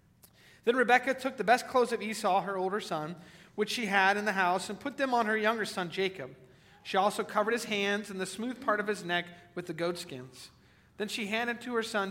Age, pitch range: 40-59, 165-225 Hz